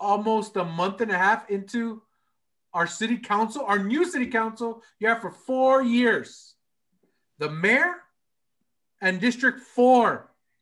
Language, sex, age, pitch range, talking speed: English, male, 40-59, 165-225 Hz, 135 wpm